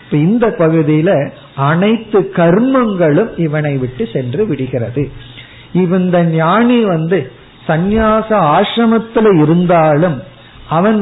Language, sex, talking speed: Tamil, male, 80 wpm